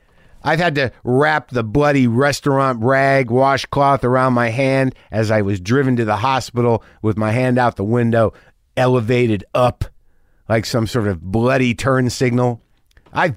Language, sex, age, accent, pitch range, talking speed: English, male, 50-69, American, 110-140 Hz, 155 wpm